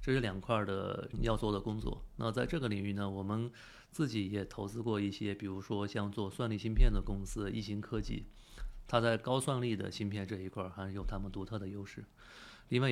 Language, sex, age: Chinese, male, 30-49